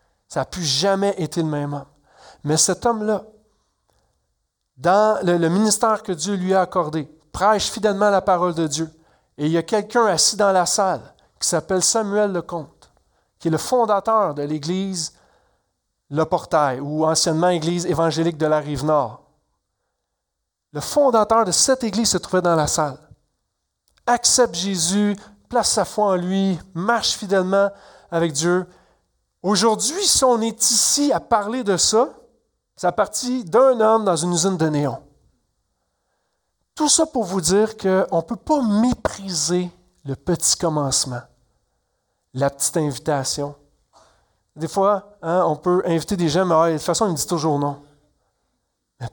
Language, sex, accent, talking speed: French, male, Canadian, 155 wpm